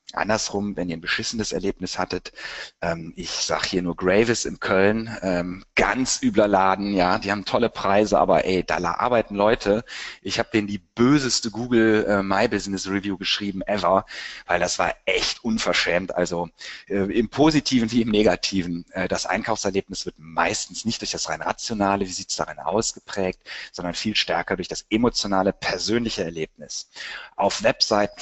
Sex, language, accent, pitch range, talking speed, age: male, German, German, 90-110 Hz, 165 wpm, 30-49